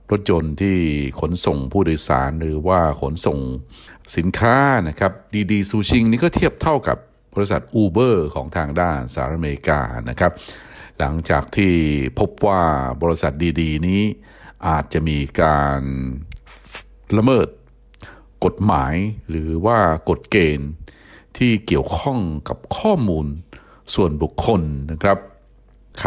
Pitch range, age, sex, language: 70-95 Hz, 60-79, male, Thai